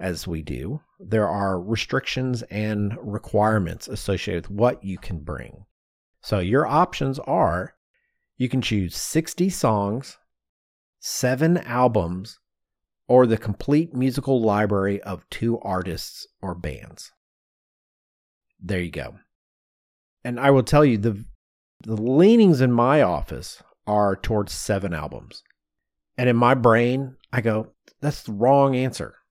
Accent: American